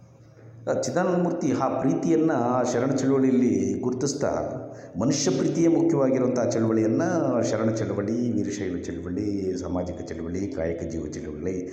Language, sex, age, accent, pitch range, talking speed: Kannada, male, 60-79, native, 95-140 Hz, 100 wpm